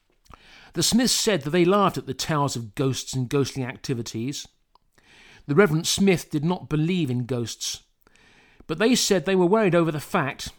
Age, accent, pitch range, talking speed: 50-69, British, 135-185 Hz, 175 wpm